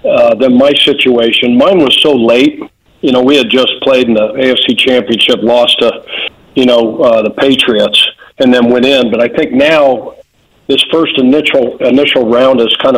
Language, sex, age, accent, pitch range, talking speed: English, male, 50-69, American, 120-140 Hz, 185 wpm